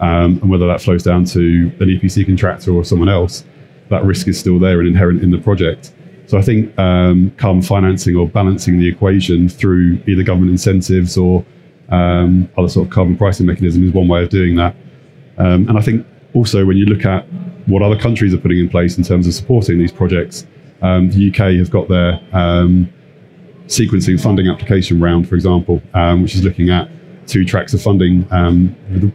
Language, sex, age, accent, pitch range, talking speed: English, male, 30-49, British, 90-100 Hz, 200 wpm